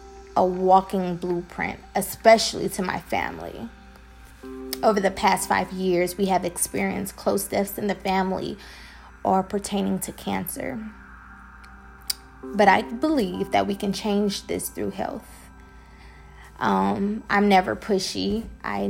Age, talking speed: 20-39, 125 wpm